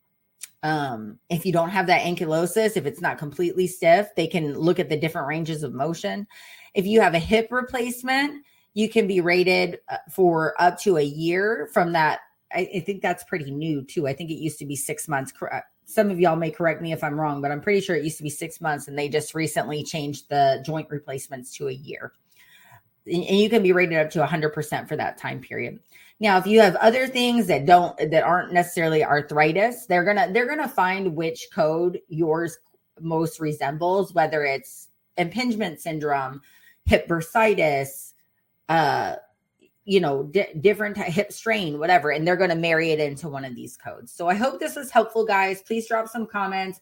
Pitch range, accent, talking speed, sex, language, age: 155-205 Hz, American, 200 wpm, female, English, 30-49